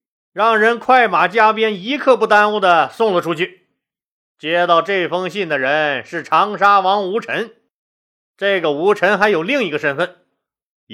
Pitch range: 195-250 Hz